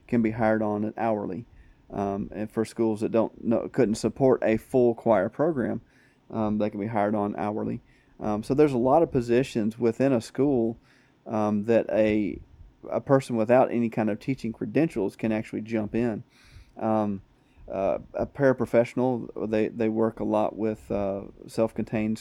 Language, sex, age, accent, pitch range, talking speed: English, male, 30-49, American, 105-120 Hz, 170 wpm